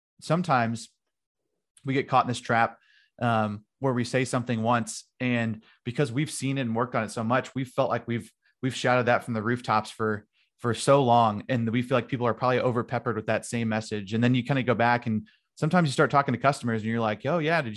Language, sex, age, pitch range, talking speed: English, male, 30-49, 110-130 Hz, 240 wpm